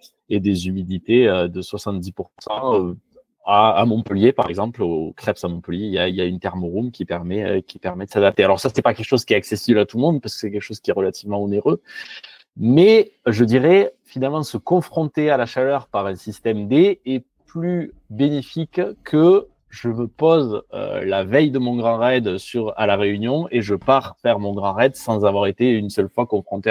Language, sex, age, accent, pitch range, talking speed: French, male, 30-49, French, 100-130 Hz, 210 wpm